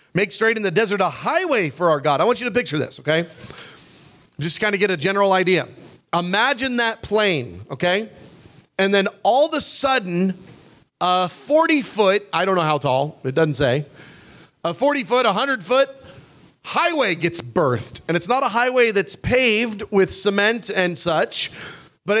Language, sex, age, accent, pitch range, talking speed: English, male, 30-49, American, 175-245 Hz, 180 wpm